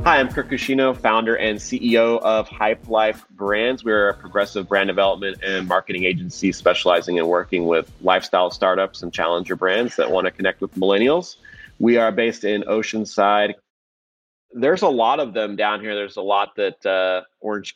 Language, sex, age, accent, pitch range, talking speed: English, male, 30-49, American, 95-110 Hz, 180 wpm